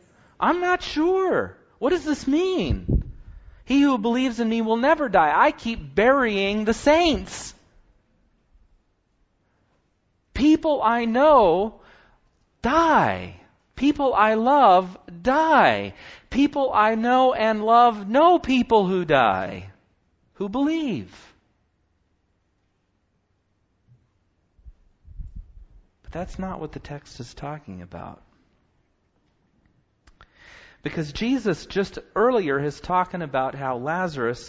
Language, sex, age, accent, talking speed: English, male, 40-59, American, 100 wpm